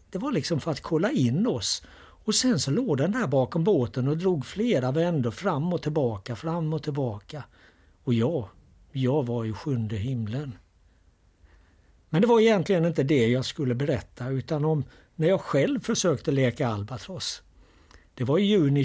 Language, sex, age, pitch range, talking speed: Swedish, male, 60-79, 120-160 Hz, 170 wpm